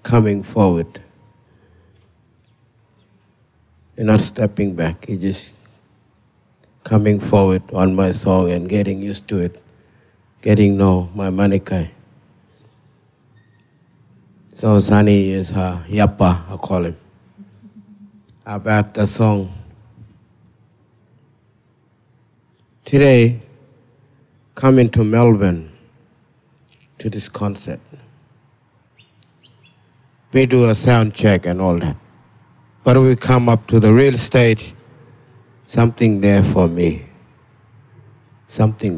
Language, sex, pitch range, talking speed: English, male, 100-120 Hz, 95 wpm